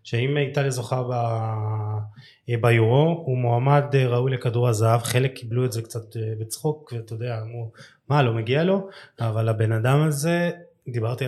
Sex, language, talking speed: male, Hebrew, 155 wpm